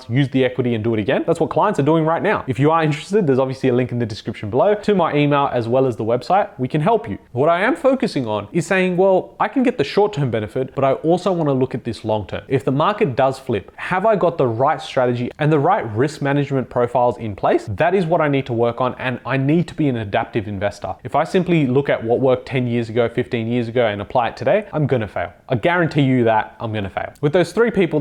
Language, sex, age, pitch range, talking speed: English, male, 20-39, 125-165 Hz, 275 wpm